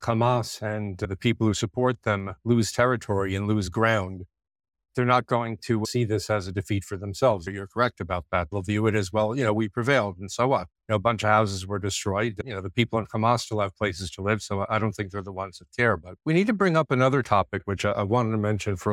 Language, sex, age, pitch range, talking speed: English, male, 50-69, 100-120 Hz, 270 wpm